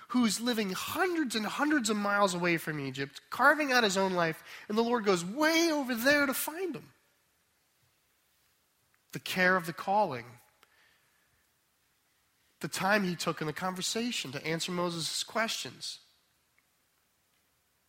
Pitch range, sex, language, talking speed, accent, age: 150-225 Hz, male, English, 140 wpm, American, 30-49